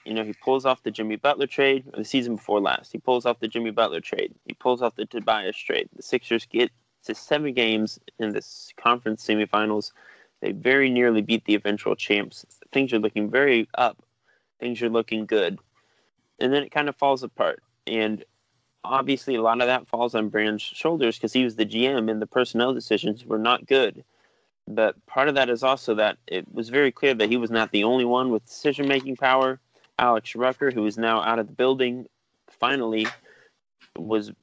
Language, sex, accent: English, male, American